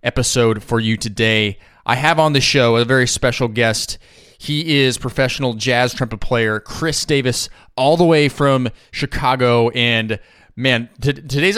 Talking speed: 155 wpm